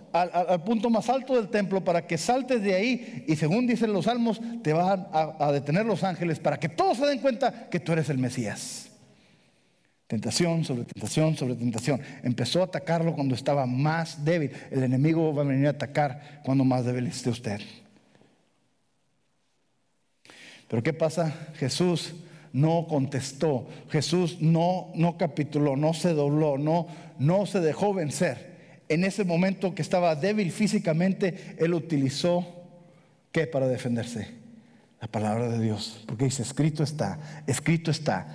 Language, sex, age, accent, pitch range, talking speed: English, male, 50-69, Mexican, 145-195 Hz, 155 wpm